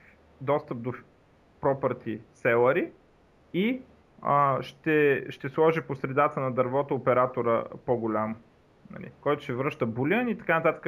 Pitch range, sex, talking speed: 120-155 Hz, male, 120 wpm